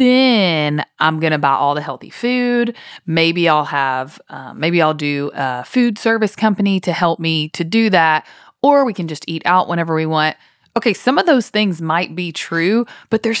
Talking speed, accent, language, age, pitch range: 200 wpm, American, English, 30-49, 170-225 Hz